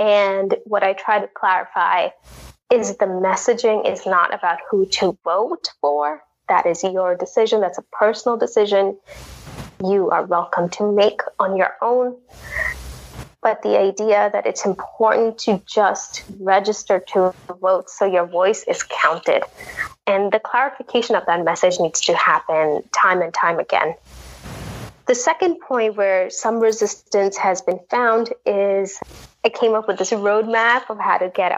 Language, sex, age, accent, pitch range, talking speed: English, female, 20-39, American, 185-225 Hz, 155 wpm